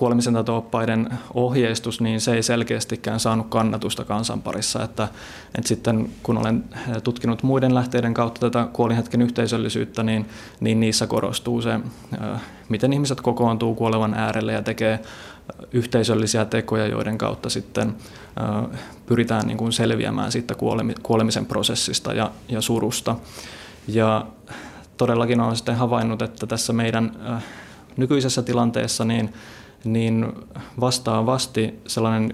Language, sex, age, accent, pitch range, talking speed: Finnish, male, 20-39, native, 110-120 Hz, 115 wpm